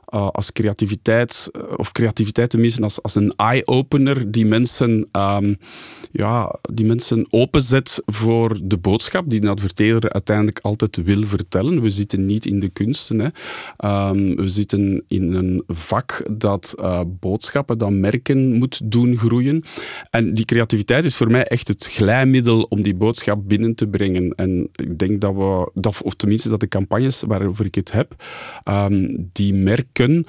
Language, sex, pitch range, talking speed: Dutch, male, 100-120 Hz, 160 wpm